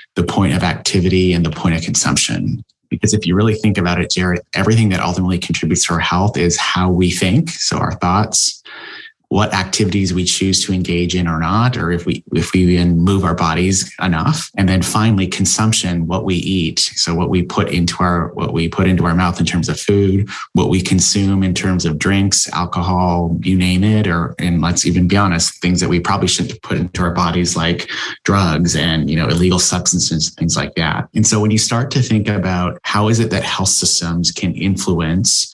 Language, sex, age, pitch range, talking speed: English, male, 30-49, 85-95 Hz, 210 wpm